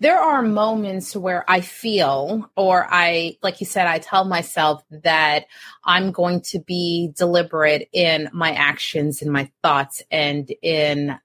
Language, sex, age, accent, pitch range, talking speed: English, female, 30-49, American, 155-190 Hz, 150 wpm